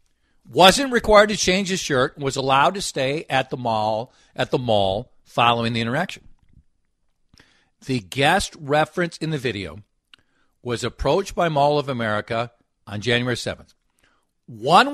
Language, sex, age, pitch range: English, male, 50-69, 120-185 Hz